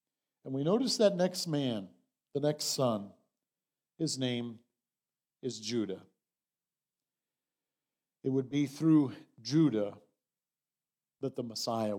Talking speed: 105 wpm